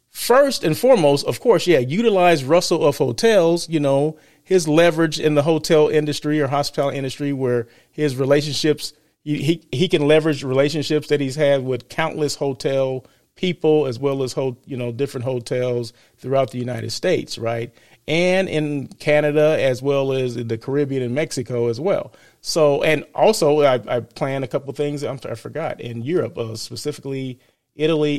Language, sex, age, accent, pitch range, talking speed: English, male, 30-49, American, 135-180 Hz, 170 wpm